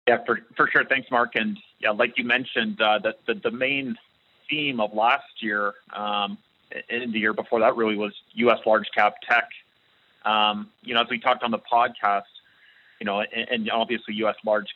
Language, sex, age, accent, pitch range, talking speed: English, male, 30-49, American, 105-120 Hz, 195 wpm